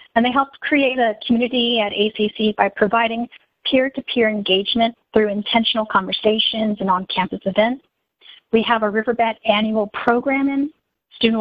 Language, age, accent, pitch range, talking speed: English, 40-59, American, 215-245 Hz, 130 wpm